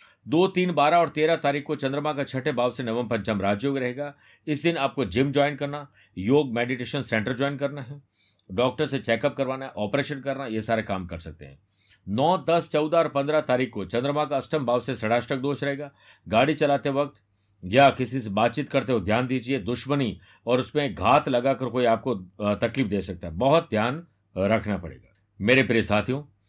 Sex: male